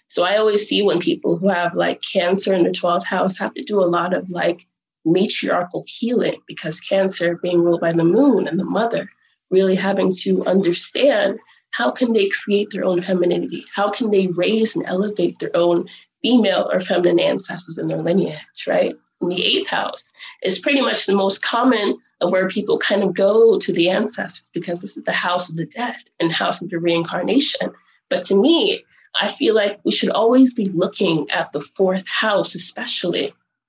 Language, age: English, 20-39